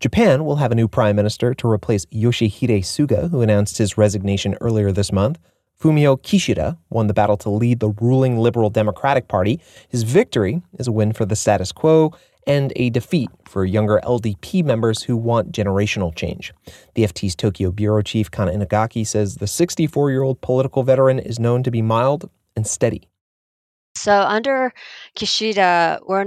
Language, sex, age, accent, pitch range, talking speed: English, male, 30-49, American, 120-170 Hz, 165 wpm